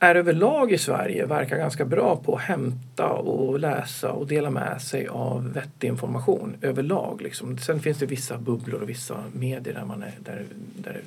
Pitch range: 125-155 Hz